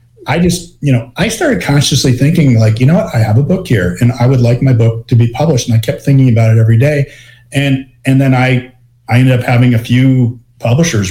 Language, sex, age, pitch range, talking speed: English, male, 40-59, 120-135 Hz, 245 wpm